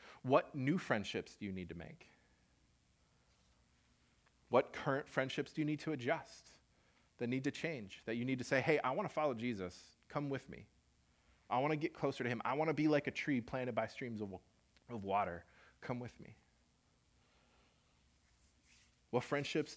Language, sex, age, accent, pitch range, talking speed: English, male, 30-49, American, 85-140 Hz, 180 wpm